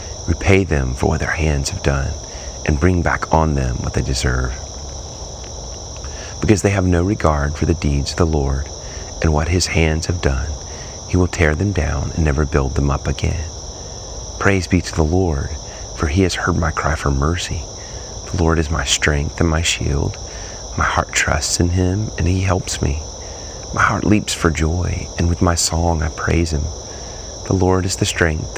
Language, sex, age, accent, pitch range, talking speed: English, male, 40-59, American, 75-95 Hz, 190 wpm